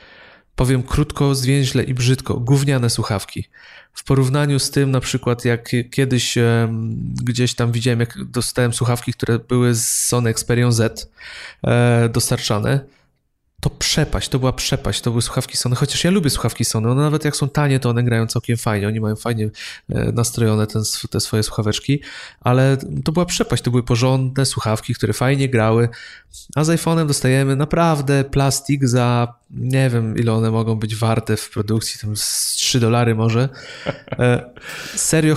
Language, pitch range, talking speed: Polish, 115-140 Hz, 160 wpm